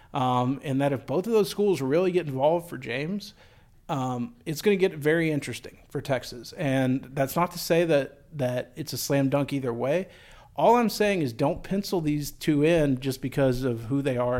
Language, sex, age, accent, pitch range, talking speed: English, male, 40-59, American, 120-150 Hz, 210 wpm